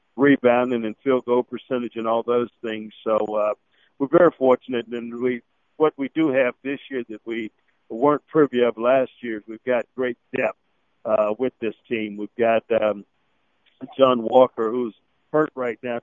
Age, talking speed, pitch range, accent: 50-69, 175 wpm, 110-125 Hz, American